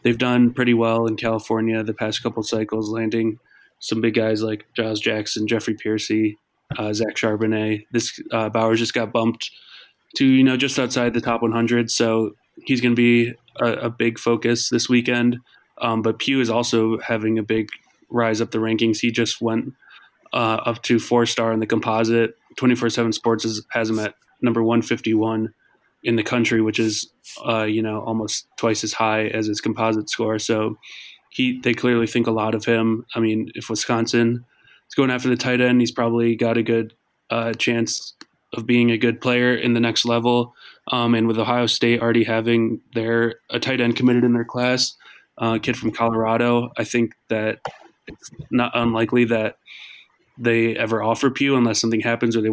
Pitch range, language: 110-120 Hz, English